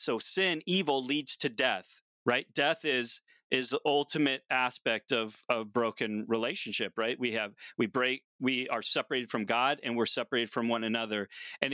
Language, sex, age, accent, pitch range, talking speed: English, male, 30-49, American, 115-150 Hz, 175 wpm